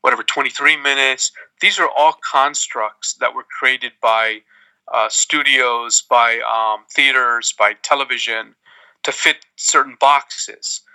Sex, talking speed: male, 120 wpm